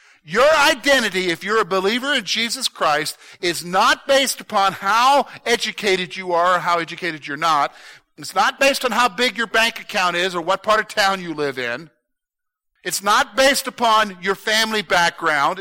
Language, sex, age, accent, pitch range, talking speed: English, male, 50-69, American, 175-240 Hz, 180 wpm